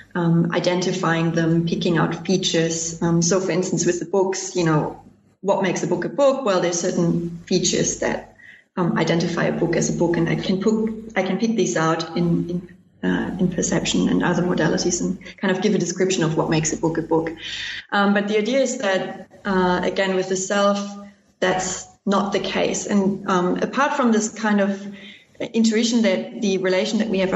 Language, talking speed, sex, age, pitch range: English, 200 wpm, female, 30-49, 175-200 Hz